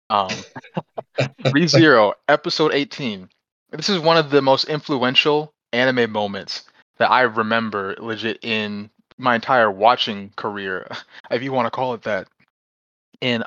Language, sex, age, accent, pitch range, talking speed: English, male, 30-49, American, 105-135 Hz, 135 wpm